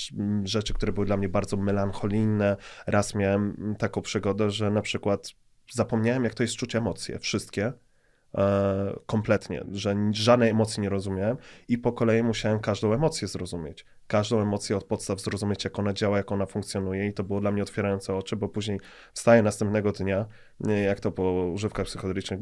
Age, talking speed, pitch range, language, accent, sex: 20-39, 165 wpm, 100-115 Hz, Polish, native, male